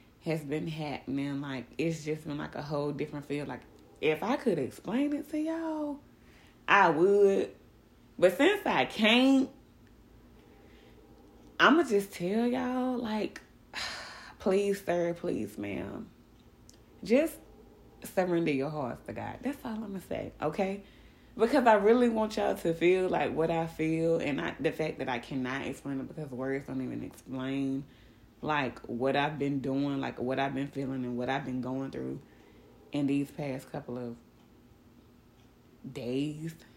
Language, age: English, 20-39